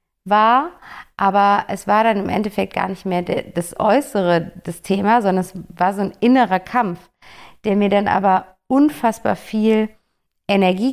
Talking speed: 155 wpm